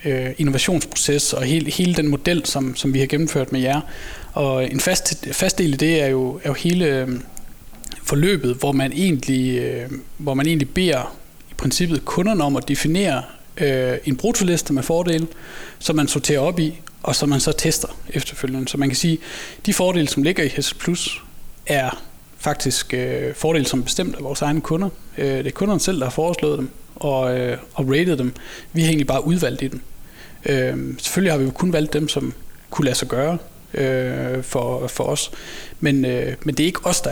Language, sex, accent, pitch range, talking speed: Danish, male, native, 130-160 Hz, 200 wpm